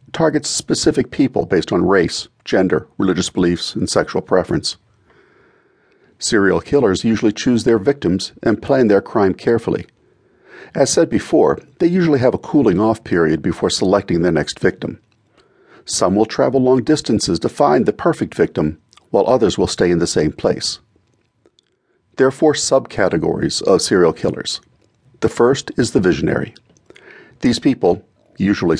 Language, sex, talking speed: English, male, 145 wpm